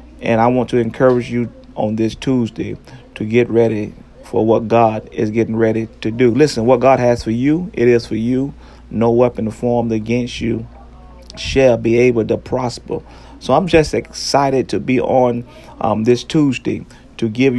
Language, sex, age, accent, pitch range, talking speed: English, male, 40-59, American, 115-125 Hz, 175 wpm